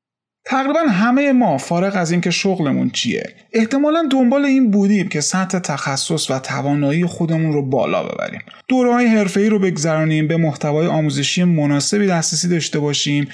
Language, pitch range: Persian, 155-215 Hz